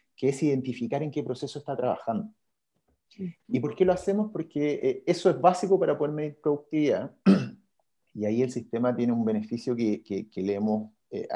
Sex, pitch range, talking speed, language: male, 115-150 Hz, 185 wpm, Spanish